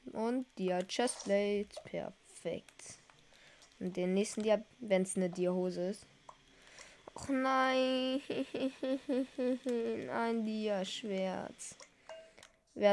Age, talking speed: 20-39, 85 wpm